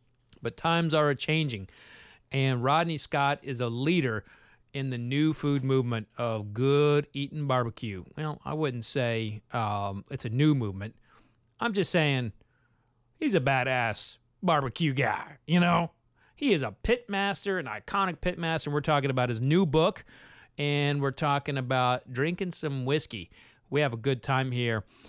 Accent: American